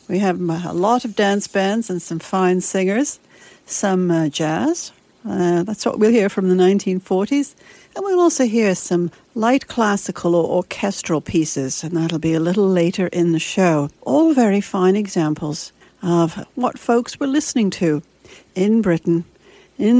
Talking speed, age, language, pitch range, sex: 160 wpm, 60-79, English, 180-230 Hz, female